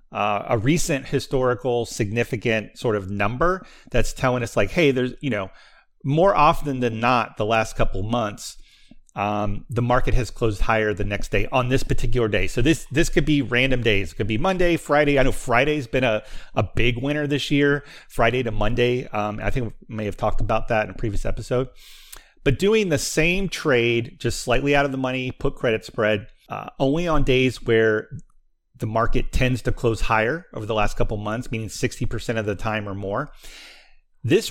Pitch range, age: 110-140 Hz, 30-49